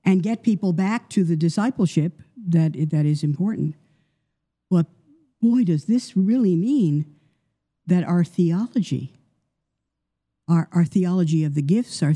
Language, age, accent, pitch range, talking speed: English, 60-79, American, 155-205 Hz, 135 wpm